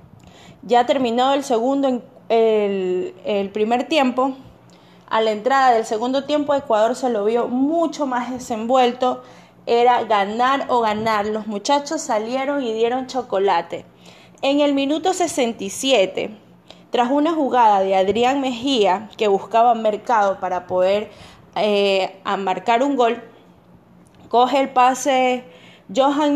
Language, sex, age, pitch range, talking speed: English, female, 20-39, 220-280 Hz, 125 wpm